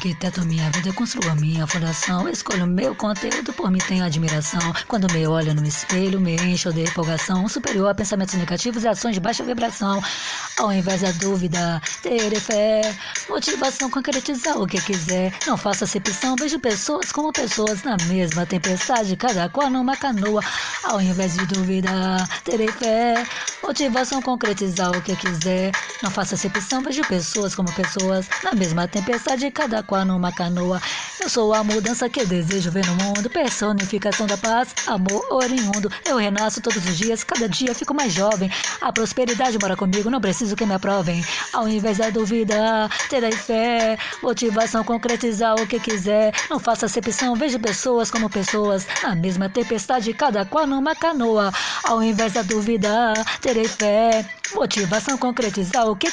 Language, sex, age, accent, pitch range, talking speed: Portuguese, female, 20-39, Brazilian, 190-235 Hz, 165 wpm